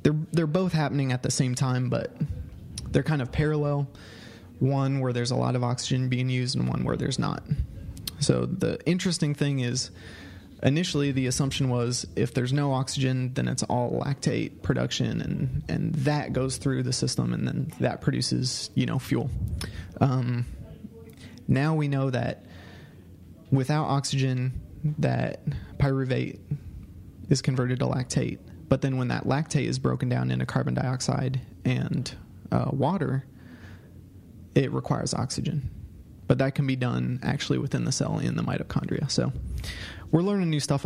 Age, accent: 20-39, American